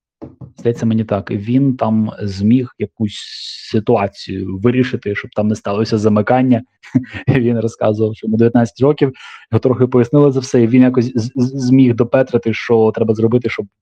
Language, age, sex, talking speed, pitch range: Ukrainian, 20-39, male, 150 wpm, 105-125 Hz